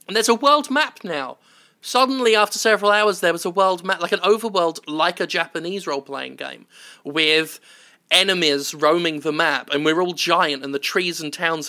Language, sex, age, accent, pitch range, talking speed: English, male, 20-39, British, 150-195 Hz, 190 wpm